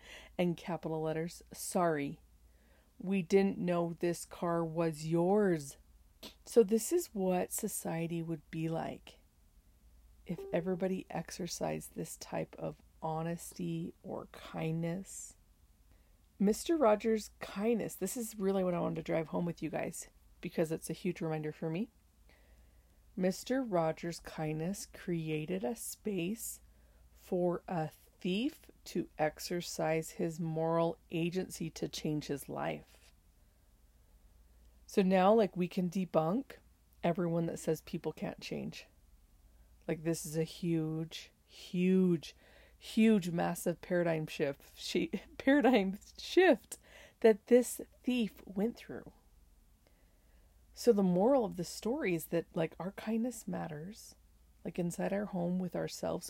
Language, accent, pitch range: English, American, 155-195 Hz